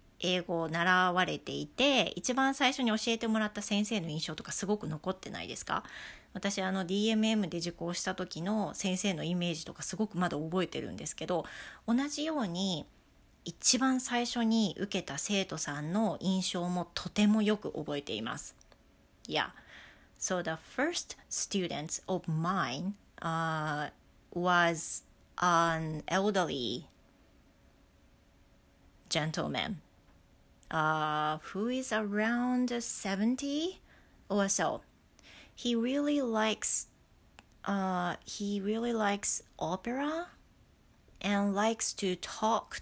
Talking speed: 45 wpm